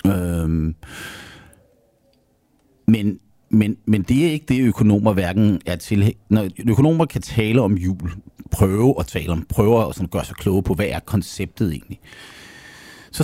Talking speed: 145 wpm